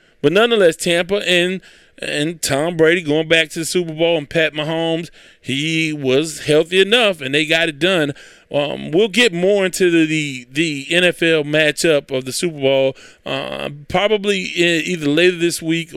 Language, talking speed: English, 170 wpm